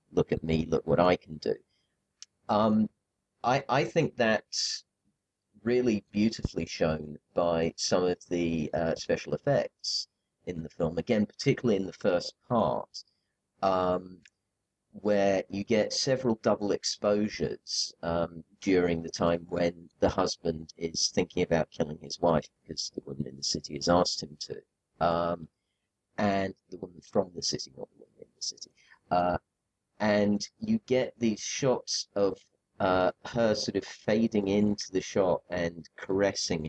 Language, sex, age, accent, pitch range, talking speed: English, male, 40-59, British, 85-105 Hz, 150 wpm